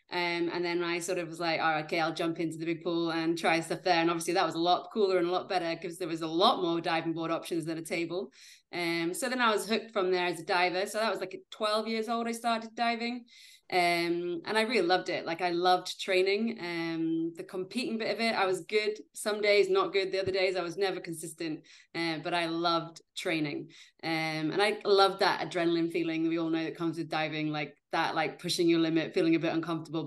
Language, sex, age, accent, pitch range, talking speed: English, female, 20-39, British, 170-200 Hz, 245 wpm